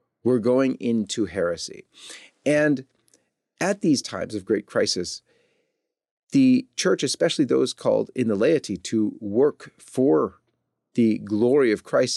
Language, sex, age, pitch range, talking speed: English, male, 40-59, 110-145 Hz, 130 wpm